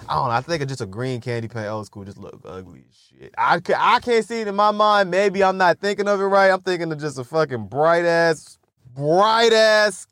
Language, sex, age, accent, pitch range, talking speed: English, male, 20-39, American, 145-215 Hz, 255 wpm